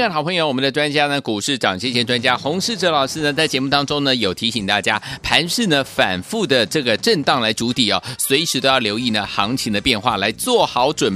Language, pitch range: Chinese, 120-165 Hz